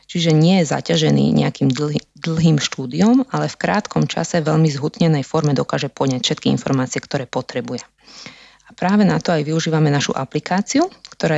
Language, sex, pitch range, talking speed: Slovak, female, 140-170 Hz, 160 wpm